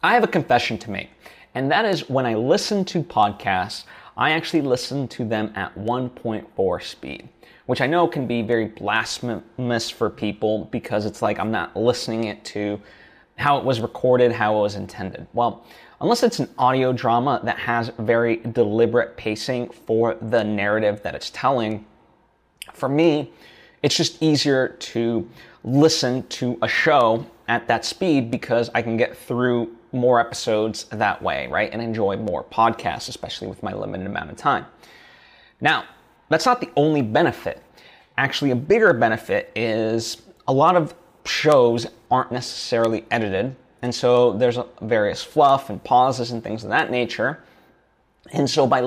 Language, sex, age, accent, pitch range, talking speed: English, male, 20-39, American, 110-130 Hz, 160 wpm